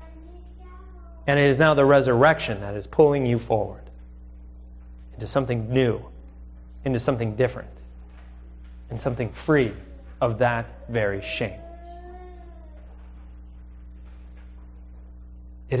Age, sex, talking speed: 30-49, male, 95 wpm